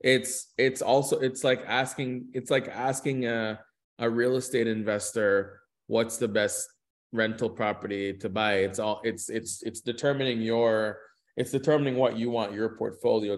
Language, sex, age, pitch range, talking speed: Hebrew, male, 20-39, 100-120 Hz, 155 wpm